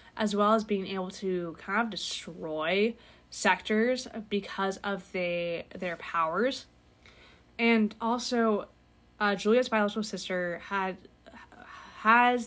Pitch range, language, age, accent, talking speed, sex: 185-220 Hz, English, 20-39, American, 110 wpm, female